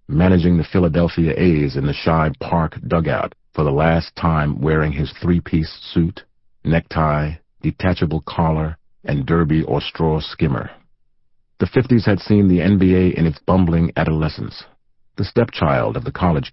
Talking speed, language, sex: 145 wpm, English, male